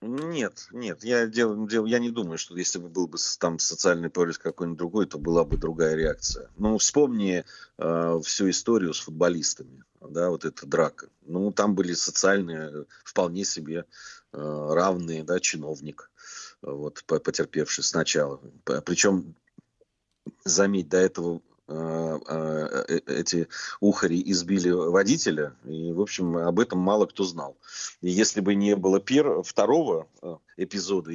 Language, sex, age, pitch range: Russian, male, 30-49, 80-95 Hz